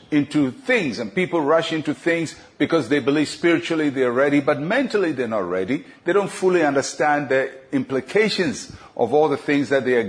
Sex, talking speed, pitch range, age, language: male, 185 wpm, 135-165 Hz, 50-69, English